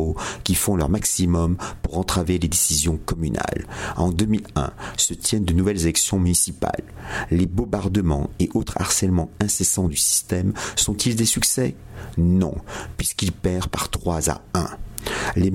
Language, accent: French, French